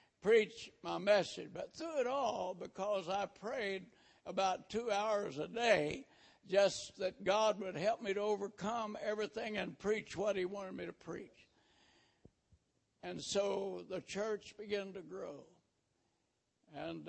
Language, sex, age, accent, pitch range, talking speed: English, male, 60-79, American, 185-240 Hz, 140 wpm